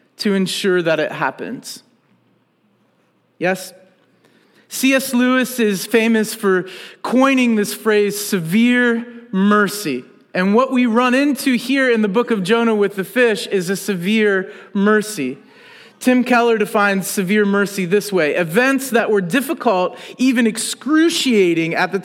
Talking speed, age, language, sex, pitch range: 135 wpm, 40-59, English, male, 190-235 Hz